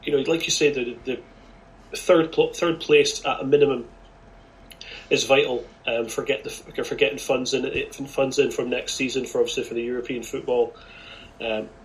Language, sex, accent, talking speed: English, male, British, 180 wpm